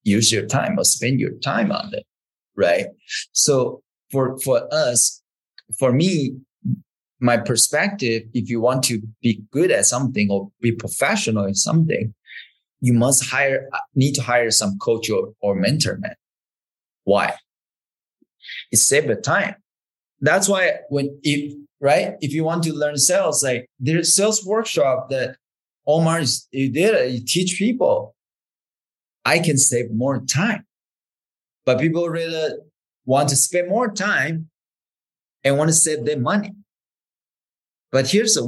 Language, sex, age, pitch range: English, male, 20-39, 115-160 Hz